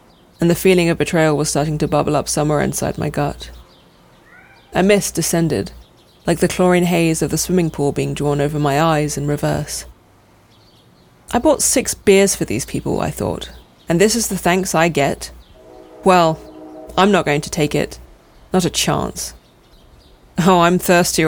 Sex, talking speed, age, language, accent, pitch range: female, 170 wpm, 30-49, English, British, 150-180 Hz